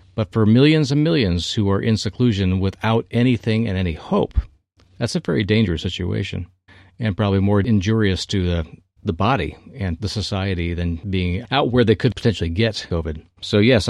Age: 40-59